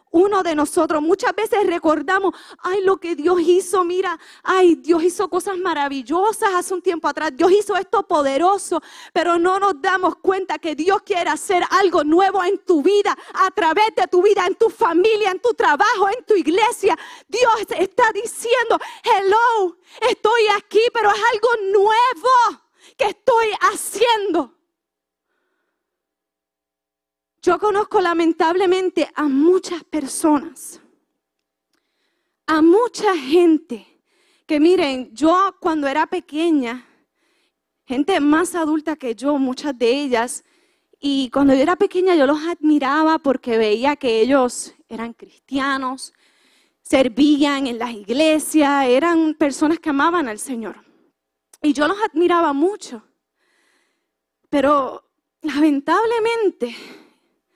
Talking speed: 125 wpm